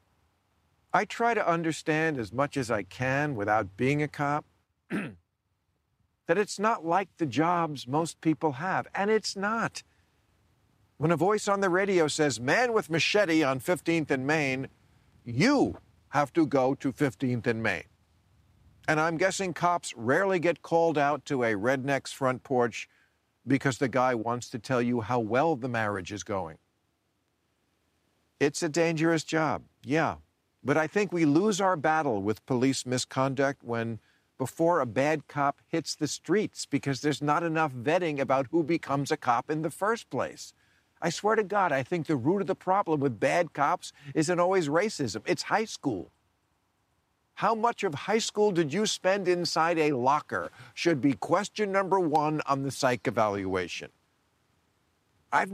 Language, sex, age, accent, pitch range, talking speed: English, male, 50-69, American, 120-170 Hz, 165 wpm